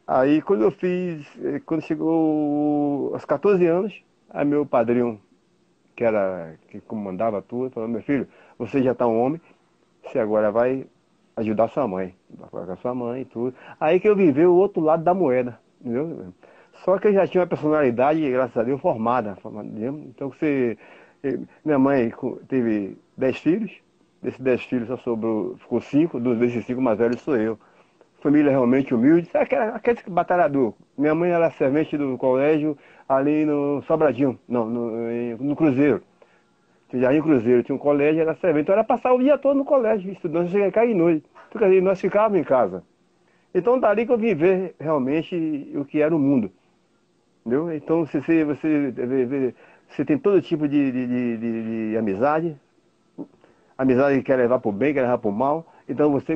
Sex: male